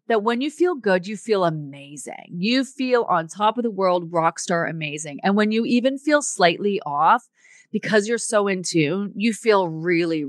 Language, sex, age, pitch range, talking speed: English, female, 30-49, 185-245 Hz, 190 wpm